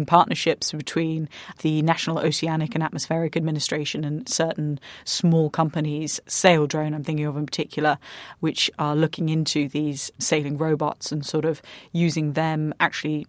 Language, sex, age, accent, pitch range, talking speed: English, female, 30-49, British, 150-170 Hz, 145 wpm